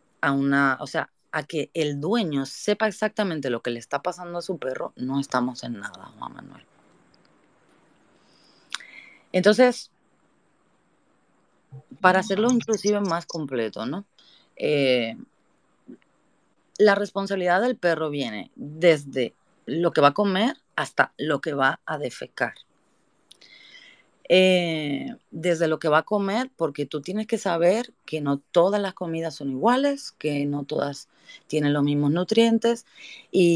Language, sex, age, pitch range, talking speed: Spanish, female, 30-49, 145-210 Hz, 135 wpm